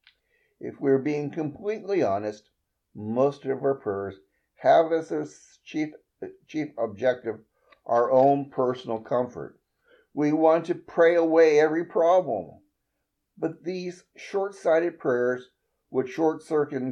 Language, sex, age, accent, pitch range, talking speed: English, male, 60-79, American, 125-165 Hz, 115 wpm